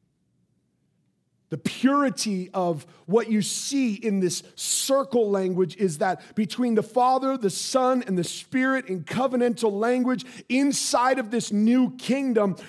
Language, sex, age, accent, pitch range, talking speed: English, male, 40-59, American, 145-220 Hz, 130 wpm